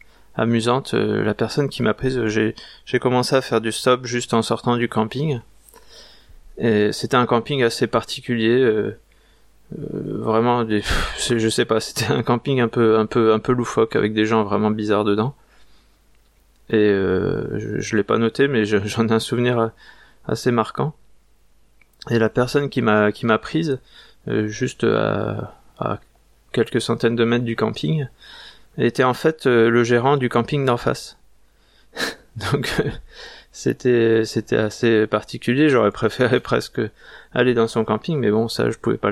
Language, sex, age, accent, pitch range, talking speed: French, male, 20-39, French, 110-125 Hz, 165 wpm